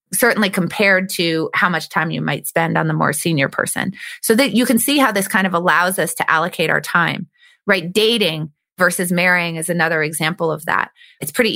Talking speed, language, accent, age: 210 wpm, English, American, 20-39